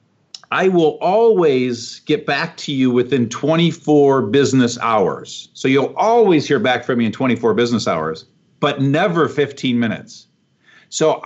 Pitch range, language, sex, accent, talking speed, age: 135-175 Hz, English, male, American, 145 wpm, 50-69